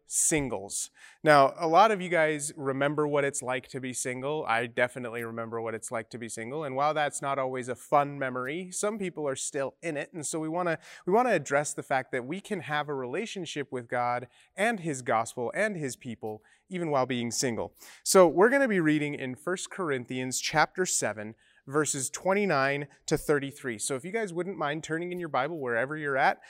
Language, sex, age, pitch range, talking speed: English, male, 30-49, 130-175 Hz, 210 wpm